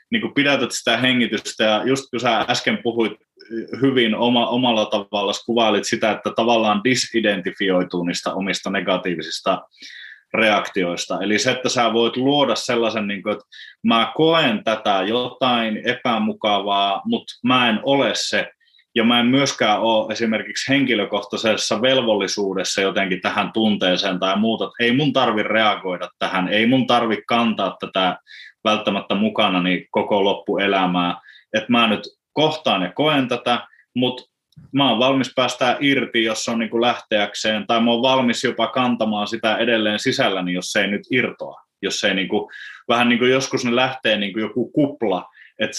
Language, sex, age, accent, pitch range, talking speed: Finnish, male, 20-39, native, 105-125 Hz, 145 wpm